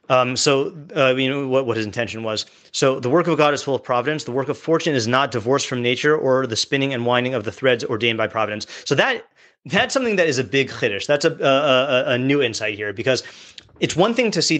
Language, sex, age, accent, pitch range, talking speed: English, male, 30-49, American, 125-150 Hz, 250 wpm